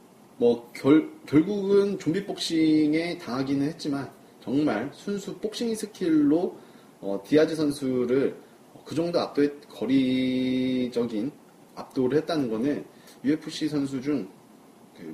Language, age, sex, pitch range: Korean, 30-49, male, 120-170 Hz